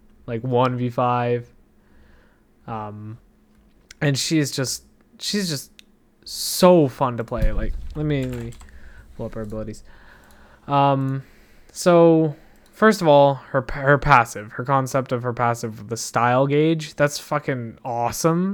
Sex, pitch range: male, 120-150 Hz